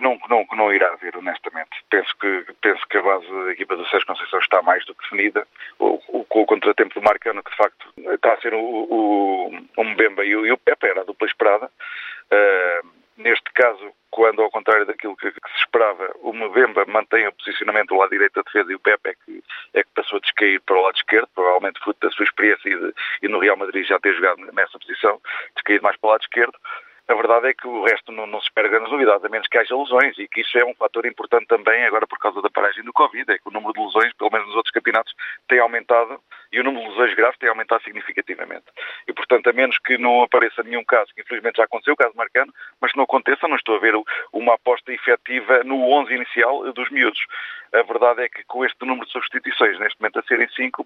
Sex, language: male, Portuguese